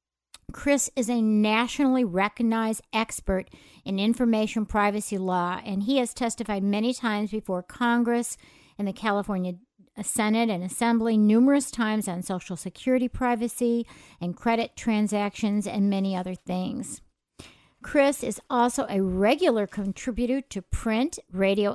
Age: 50-69